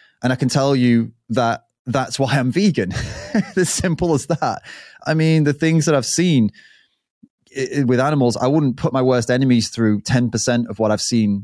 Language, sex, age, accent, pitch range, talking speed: English, male, 20-39, British, 110-130 Hz, 185 wpm